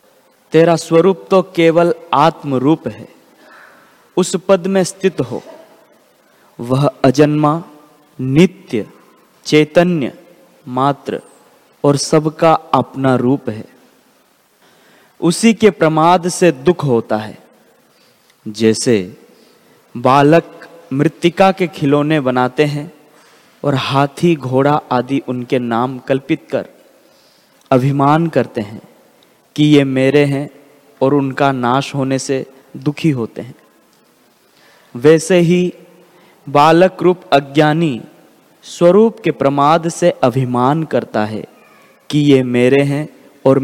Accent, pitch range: native, 135-170 Hz